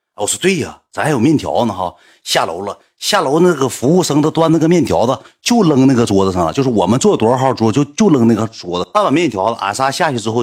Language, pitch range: Chinese, 105-145 Hz